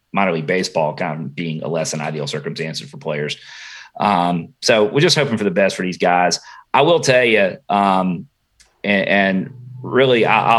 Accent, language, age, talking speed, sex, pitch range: American, English, 30-49, 185 wpm, male, 95-120 Hz